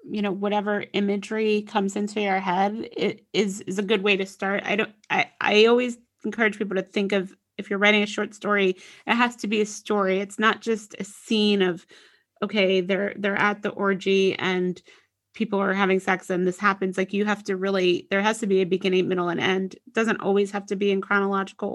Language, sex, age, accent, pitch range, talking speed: English, female, 30-49, American, 185-210 Hz, 220 wpm